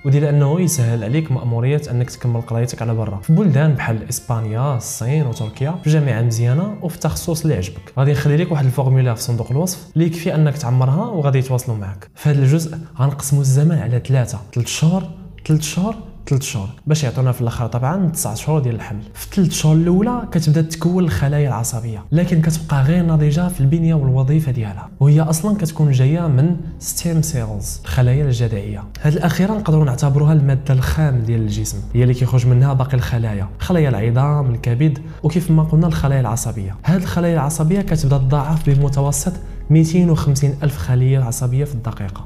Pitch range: 125-160 Hz